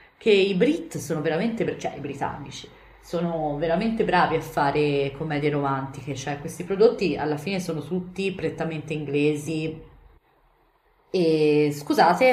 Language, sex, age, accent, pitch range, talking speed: Italian, female, 30-49, native, 155-180 Hz, 125 wpm